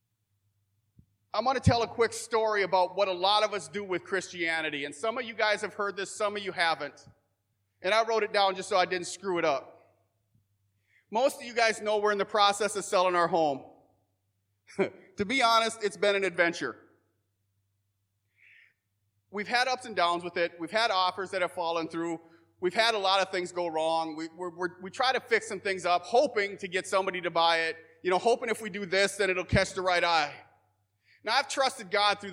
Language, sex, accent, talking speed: English, male, American, 215 wpm